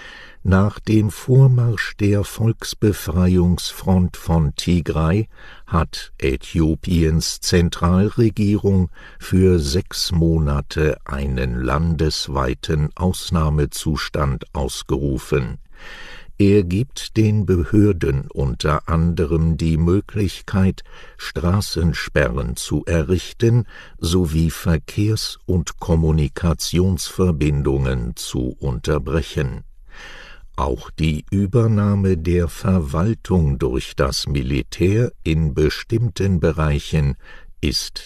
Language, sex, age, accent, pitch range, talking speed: English, male, 60-79, German, 75-95 Hz, 75 wpm